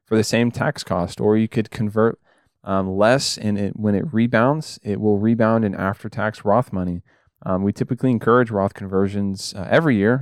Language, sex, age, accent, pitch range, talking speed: English, male, 20-39, American, 100-120 Hz, 190 wpm